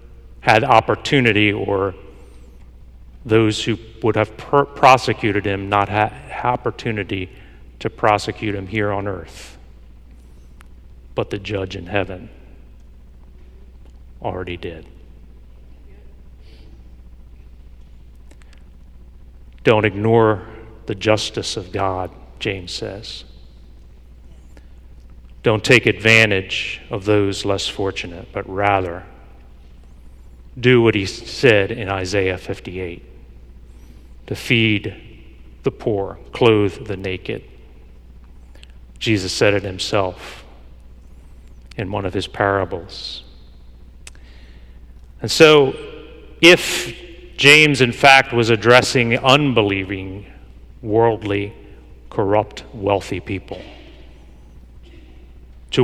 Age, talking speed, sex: 40-59, 85 wpm, male